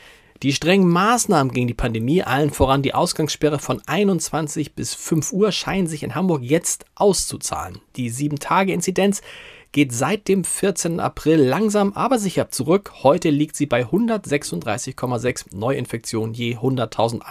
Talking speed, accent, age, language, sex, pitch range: 140 wpm, German, 40-59, German, male, 130-180 Hz